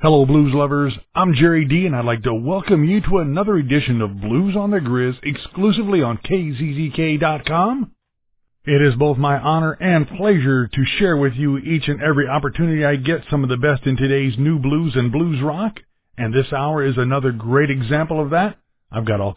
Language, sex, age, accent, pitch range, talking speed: English, male, 50-69, American, 130-170 Hz, 195 wpm